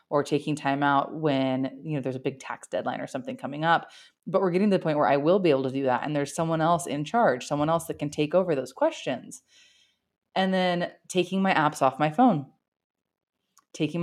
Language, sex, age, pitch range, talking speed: English, female, 20-39, 140-175 Hz, 220 wpm